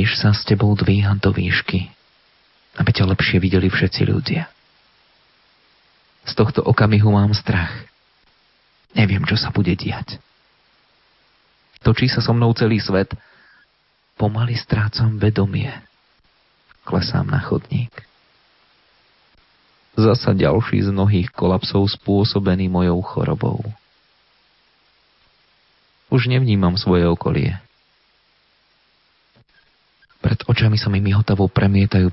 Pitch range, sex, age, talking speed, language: 95-120 Hz, male, 30-49, 100 wpm, Slovak